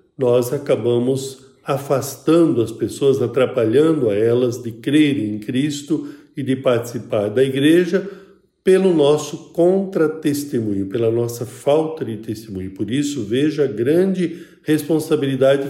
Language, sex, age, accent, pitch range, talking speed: Portuguese, male, 50-69, Brazilian, 120-150 Hz, 120 wpm